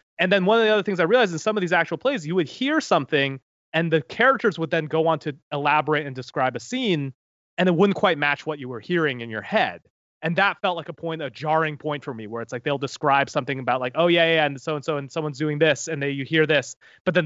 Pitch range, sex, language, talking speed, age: 140-170 Hz, male, English, 280 wpm, 30-49